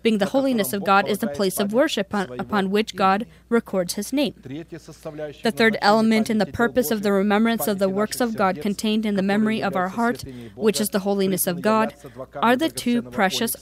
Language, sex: English, female